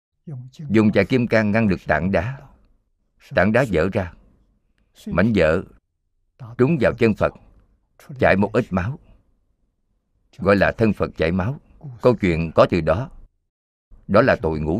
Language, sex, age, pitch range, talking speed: Vietnamese, male, 50-69, 85-115 Hz, 150 wpm